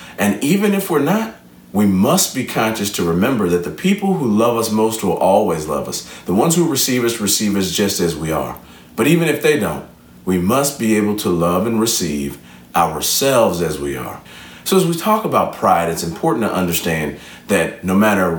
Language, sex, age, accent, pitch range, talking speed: English, male, 40-59, American, 75-100 Hz, 205 wpm